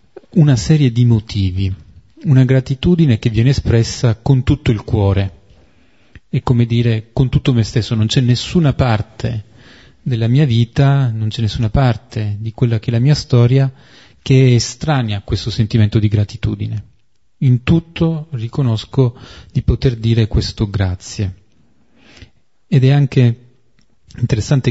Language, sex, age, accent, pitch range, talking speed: Italian, male, 30-49, native, 110-135 Hz, 140 wpm